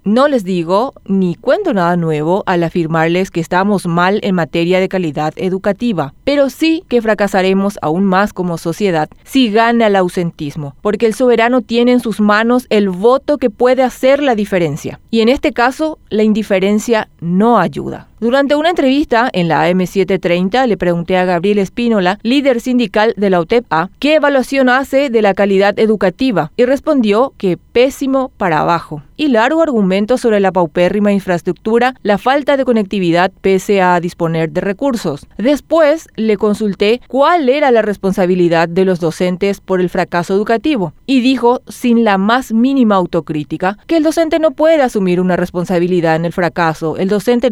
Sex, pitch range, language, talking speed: female, 180-245 Hz, Spanish, 165 wpm